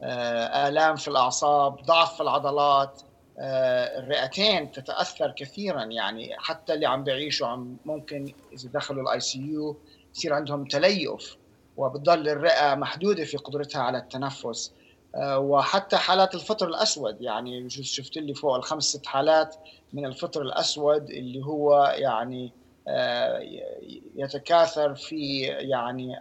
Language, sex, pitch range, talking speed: Arabic, male, 130-155 Hz, 120 wpm